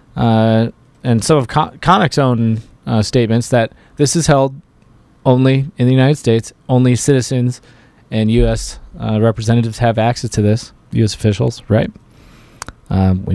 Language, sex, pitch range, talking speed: English, male, 115-160 Hz, 145 wpm